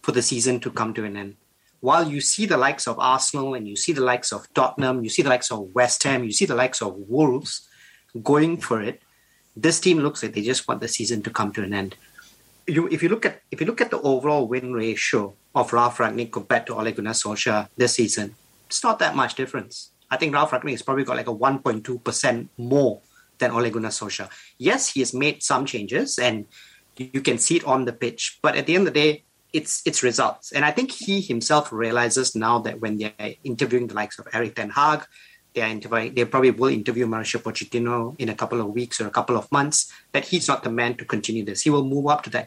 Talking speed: 235 wpm